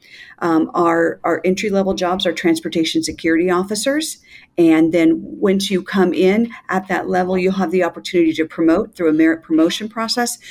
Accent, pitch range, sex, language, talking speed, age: American, 160-190 Hz, female, English, 165 wpm, 50-69